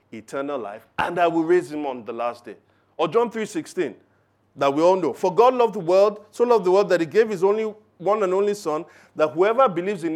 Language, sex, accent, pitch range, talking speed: English, male, Nigerian, 140-210 Hz, 235 wpm